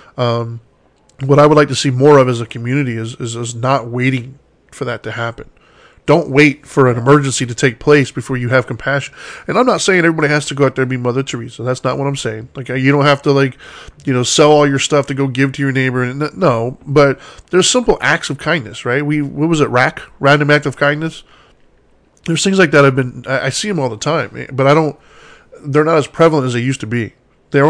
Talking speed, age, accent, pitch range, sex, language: 245 wpm, 10-29, American, 130-150 Hz, male, English